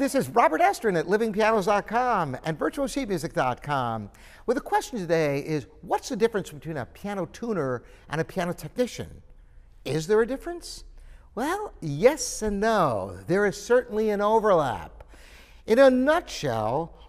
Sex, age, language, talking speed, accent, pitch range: male, 60-79, English, 140 wpm, American, 165-235 Hz